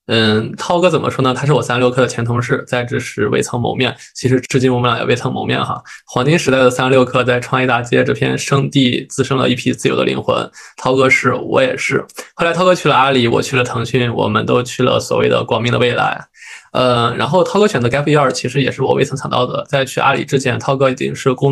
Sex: male